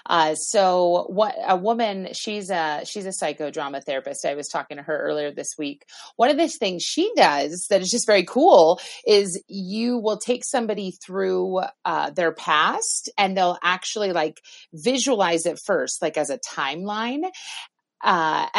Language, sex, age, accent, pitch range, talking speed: English, female, 30-49, American, 160-215 Hz, 165 wpm